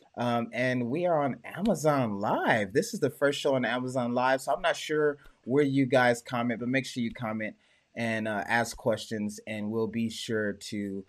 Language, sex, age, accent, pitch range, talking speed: English, male, 20-39, American, 110-130 Hz, 200 wpm